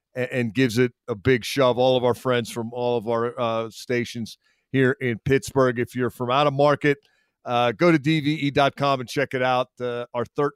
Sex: male